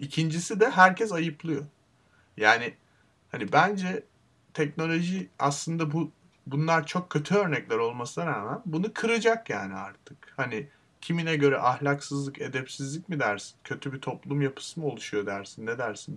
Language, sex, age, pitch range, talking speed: Turkish, male, 30-49, 125-170 Hz, 135 wpm